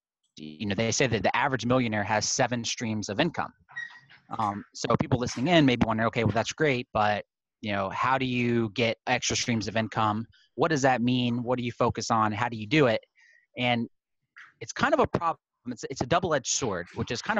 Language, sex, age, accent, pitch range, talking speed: English, male, 30-49, American, 110-135 Hz, 225 wpm